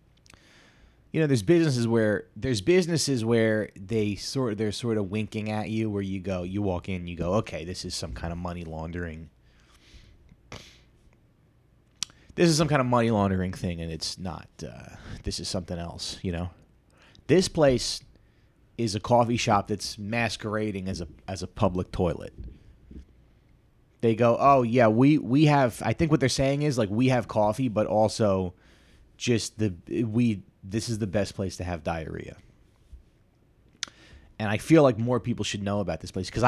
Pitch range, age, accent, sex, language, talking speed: 90-120 Hz, 30-49, American, male, English, 175 wpm